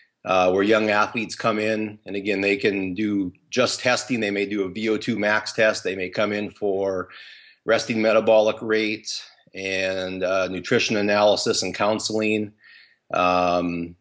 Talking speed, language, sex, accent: 150 wpm, English, male, American